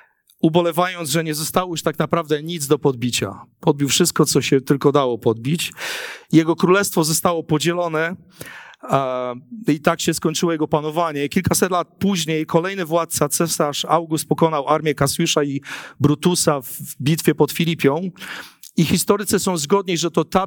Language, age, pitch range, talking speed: Polish, 40-59, 145-175 Hz, 145 wpm